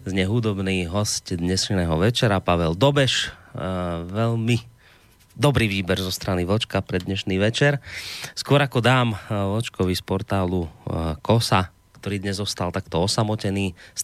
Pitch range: 90-110 Hz